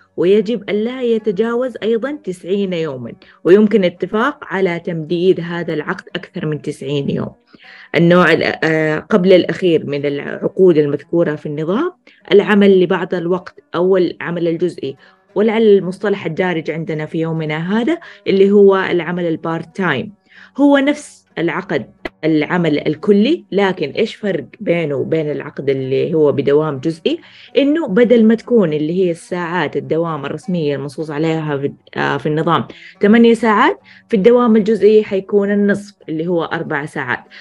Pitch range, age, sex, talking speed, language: 160-210 Hz, 20-39, female, 130 wpm, Arabic